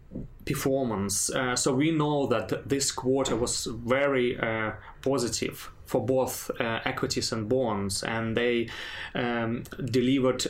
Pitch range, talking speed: 120-140 Hz, 125 wpm